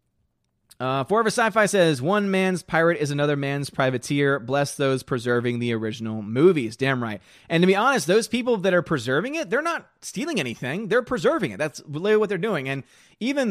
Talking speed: 185 wpm